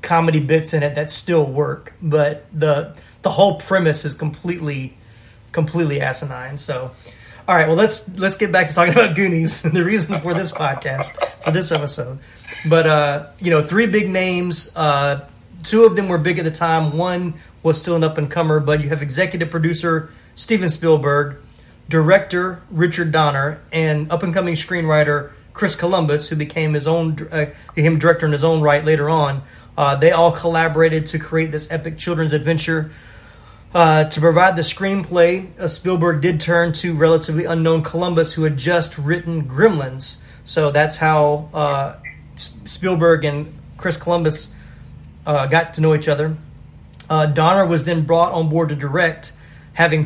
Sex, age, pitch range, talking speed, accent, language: male, 30-49, 150-170 Hz, 170 wpm, American, English